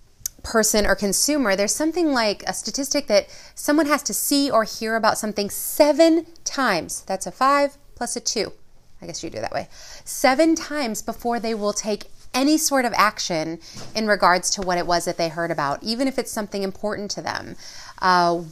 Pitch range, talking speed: 180-235 Hz, 195 wpm